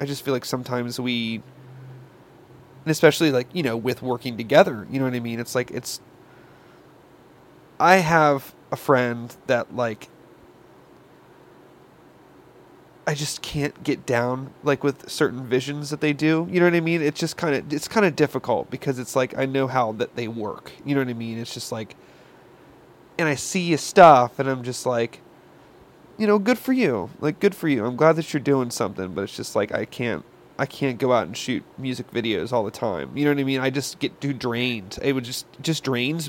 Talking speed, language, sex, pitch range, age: 210 wpm, English, male, 120-160 Hz, 30-49